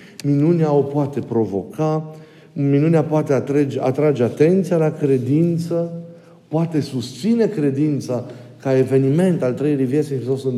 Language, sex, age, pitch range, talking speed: Romanian, male, 50-69, 130-175 Hz, 115 wpm